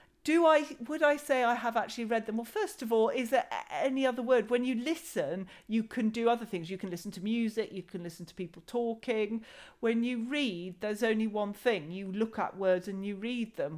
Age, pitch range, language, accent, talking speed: 40-59, 180-245 Hz, English, British, 230 wpm